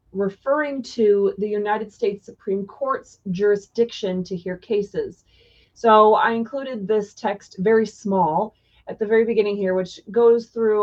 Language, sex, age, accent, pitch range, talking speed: English, female, 30-49, American, 185-225 Hz, 145 wpm